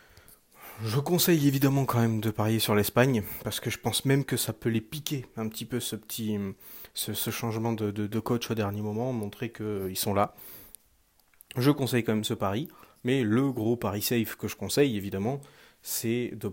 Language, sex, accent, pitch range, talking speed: French, male, French, 105-125 Hz, 200 wpm